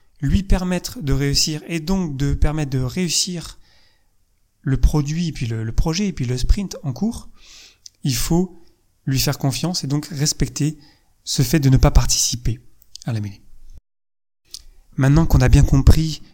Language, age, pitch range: French, 30-49, 125-160 Hz